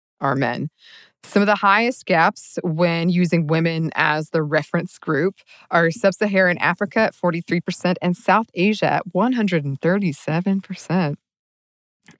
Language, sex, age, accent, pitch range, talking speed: English, female, 20-39, American, 155-195 Hz, 125 wpm